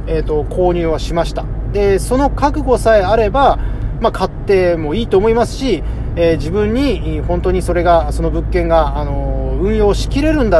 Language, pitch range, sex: Japanese, 120-170 Hz, male